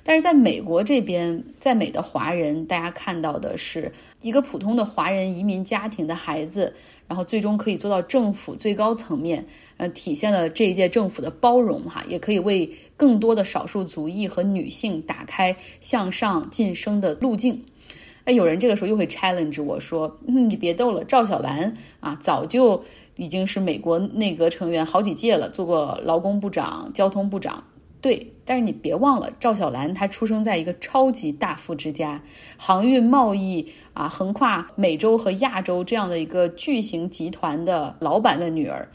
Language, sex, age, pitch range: Chinese, female, 20-39, 175-240 Hz